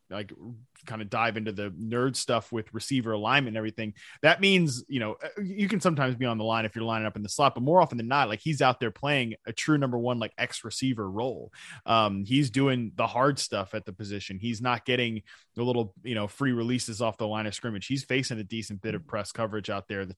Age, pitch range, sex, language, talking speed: 20-39, 110-140 Hz, male, English, 245 wpm